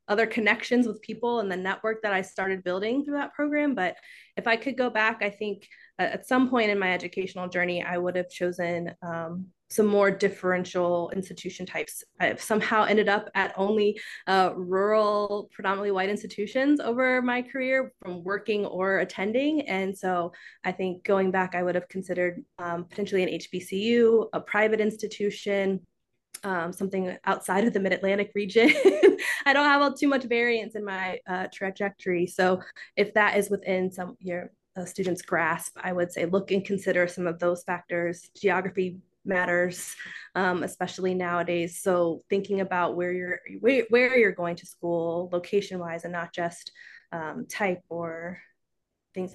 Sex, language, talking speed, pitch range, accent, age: female, English, 165 wpm, 180-215 Hz, American, 20-39